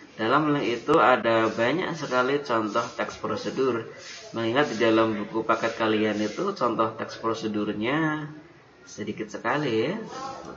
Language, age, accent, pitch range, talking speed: Indonesian, 20-39, native, 110-150 Hz, 120 wpm